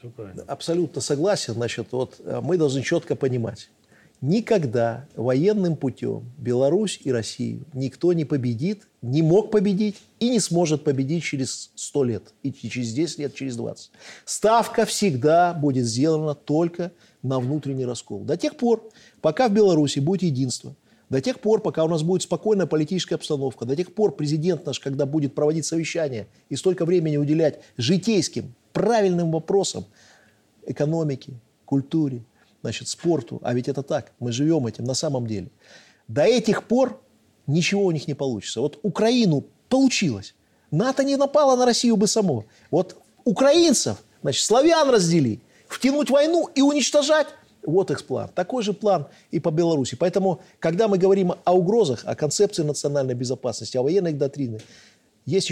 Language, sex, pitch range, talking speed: Russian, male, 130-195 Hz, 150 wpm